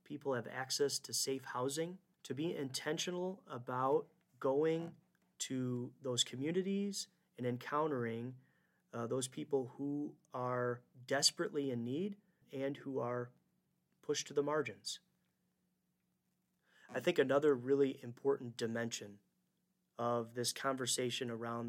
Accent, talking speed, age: American, 115 wpm, 30-49